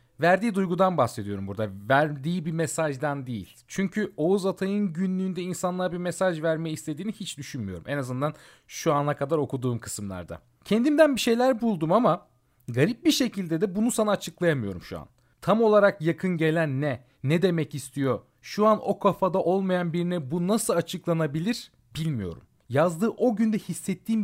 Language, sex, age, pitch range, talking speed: Turkish, male, 40-59, 115-180 Hz, 155 wpm